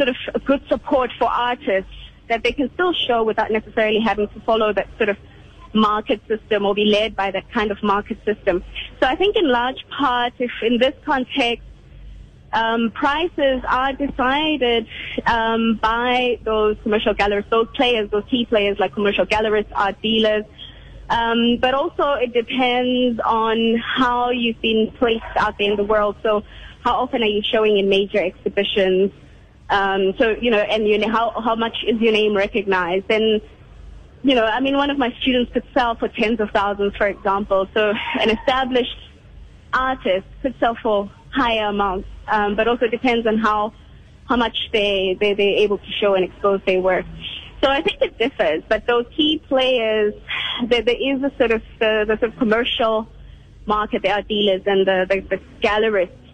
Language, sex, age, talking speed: English, female, 20-39, 180 wpm